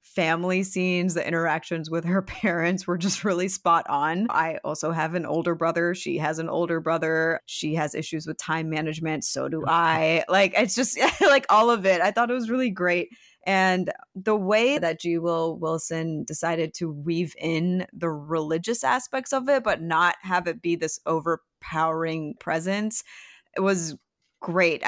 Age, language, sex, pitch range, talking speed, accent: 20-39, English, female, 165-205 Hz, 175 wpm, American